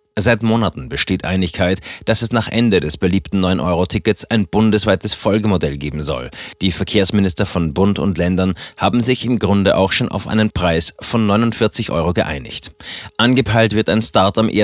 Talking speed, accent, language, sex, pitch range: 165 wpm, German, German, male, 90-110 Hz